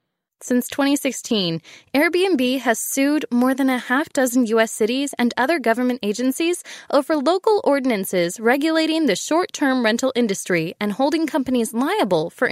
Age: 20-39